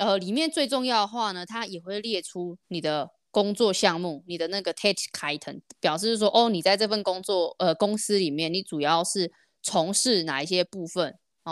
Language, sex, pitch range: Chinese, female, 165-215 Hz